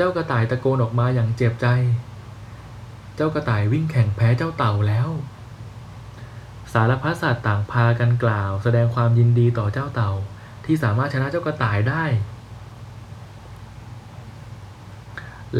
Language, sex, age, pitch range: Thai, male, 20-39, 110-120 Hz